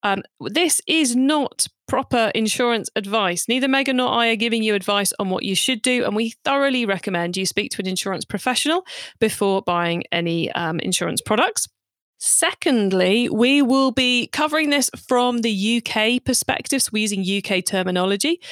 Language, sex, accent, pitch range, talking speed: English, female, British, 185-250 Hz, 165 wpm